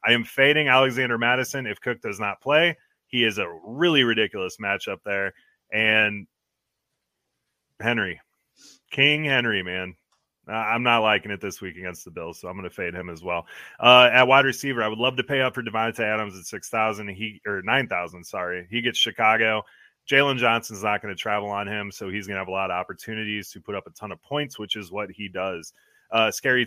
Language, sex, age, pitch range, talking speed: English, male, 30-49, 100-125 Hz, 210 wpm